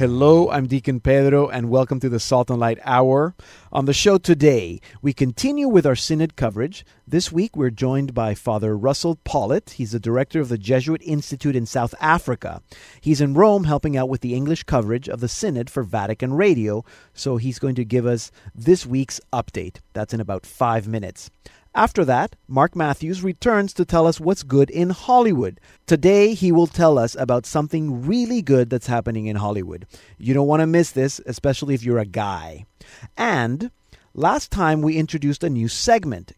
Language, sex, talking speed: English, male, 185 wpm